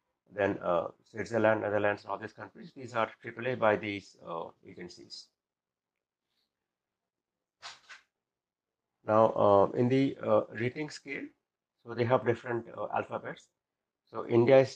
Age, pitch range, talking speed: 60-79, 105-125 Hz, 120 wpm